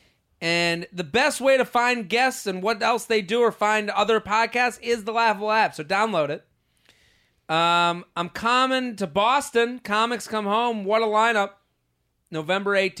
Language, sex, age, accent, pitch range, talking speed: English, male, 30-49, American, 180-235 Hz, 160 wpm